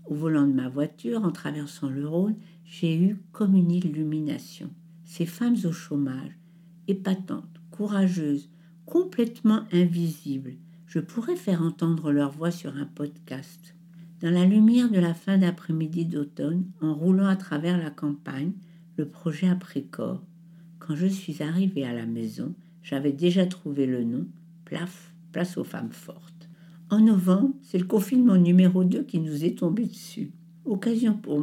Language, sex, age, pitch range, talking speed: French, female, 60-79, 165-190 Hz, 155 wpm